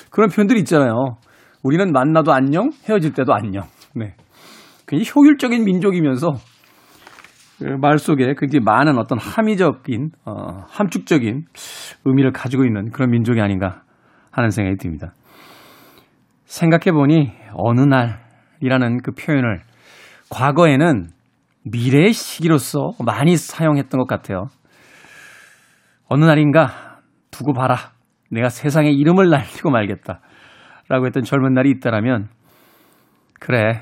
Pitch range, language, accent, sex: 120-165 Hz, Korean, native, male